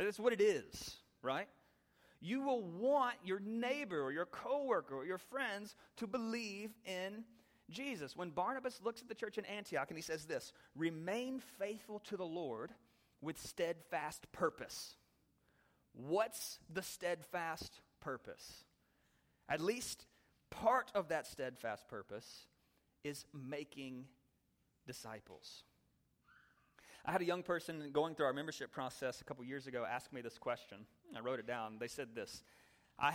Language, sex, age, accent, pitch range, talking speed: English, male, 30-49, American, 145-220 Hz, 145 wpm